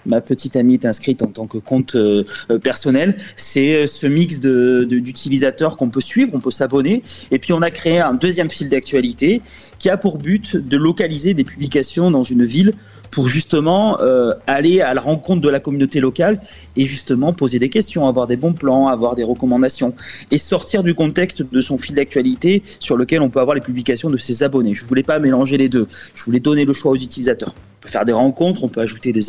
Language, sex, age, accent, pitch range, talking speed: French, male, 30-49, French, 125-160 Hz, 215 wpm